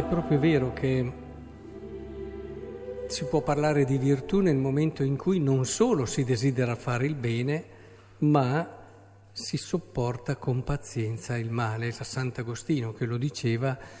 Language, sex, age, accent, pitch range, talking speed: Italian, male, 50-69, native, 110-150 Hz, 135 wpm